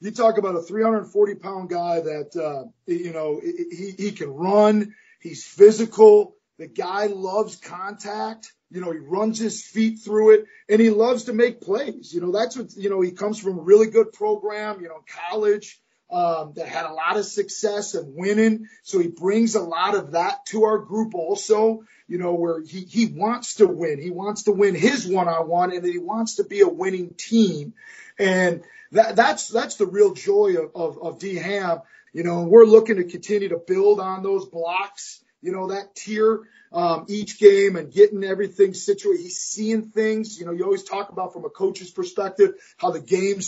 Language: English